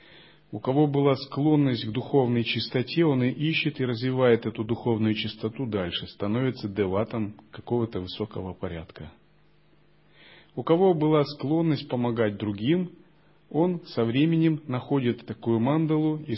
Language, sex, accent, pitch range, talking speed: Russian, male, native, 110-150 Hz, 125 wpm